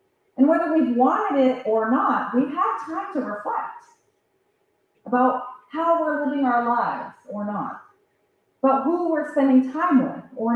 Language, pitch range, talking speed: English, 205-320 Hz, 155 wpm